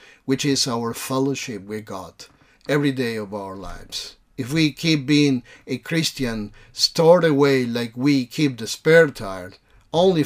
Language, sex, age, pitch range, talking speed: English, male, 50-69, 120-155 Hz, 150 wpm